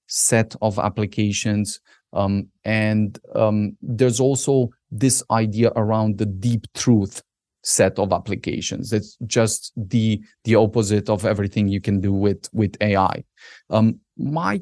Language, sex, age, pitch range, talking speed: English, male, 30-49, 105-125 Hz, 130 wpm